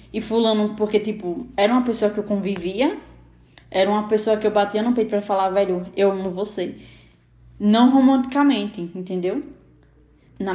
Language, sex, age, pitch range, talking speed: Portuguese, female, 10-29, 180-220 Hz, 160 wpm